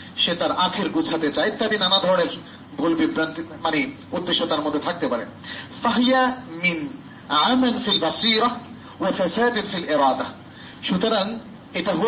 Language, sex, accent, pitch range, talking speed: Bengali, male, native, 165-235 Hz, 55 wpm